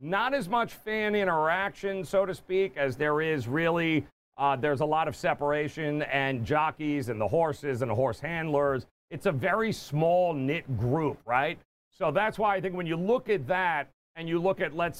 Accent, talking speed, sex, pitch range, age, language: American, 195 wpm, male, 145-190 Hz, 40-59, English